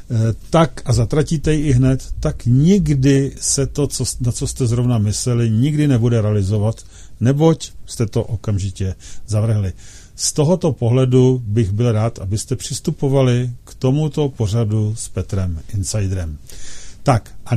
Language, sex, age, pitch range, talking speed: Czech, male, 50-69, 105-135 Hz, 135 wpm